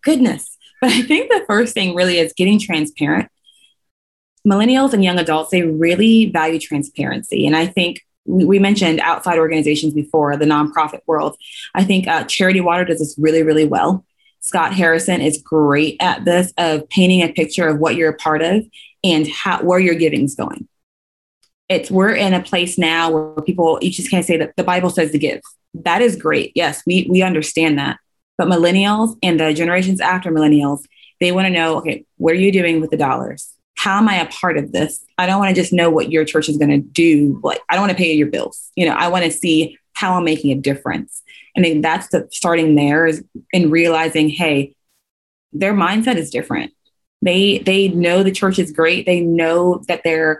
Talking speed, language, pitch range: 205 wpm, English, 155-185 Hz